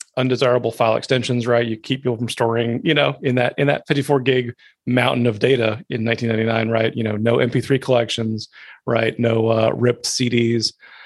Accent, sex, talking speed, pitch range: American, male, 180 wpm, 115-135 Hz